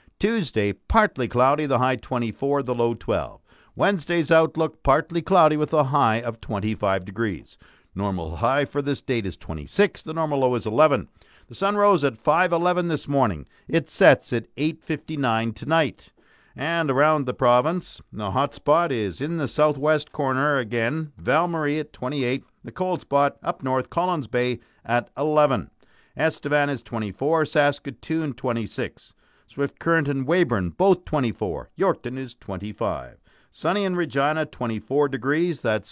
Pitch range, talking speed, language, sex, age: 120-160 Hz, 145 wpm, English, male, 50-69